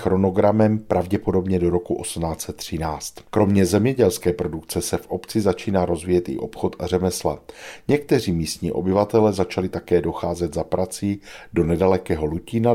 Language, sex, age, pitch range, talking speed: Czech, male, 50-69, 85-105 Hz, 130 wpm